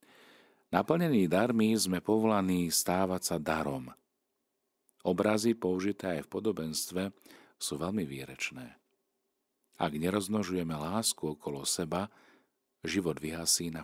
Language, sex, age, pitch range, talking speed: Slovak, male, 40-59, 75-95 Hz, 100 wpm